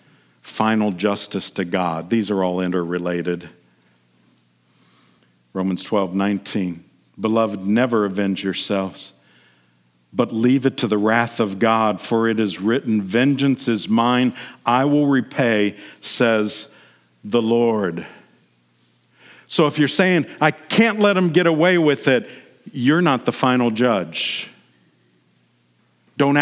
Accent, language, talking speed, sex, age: American, English, 125 wpm, male, 50-69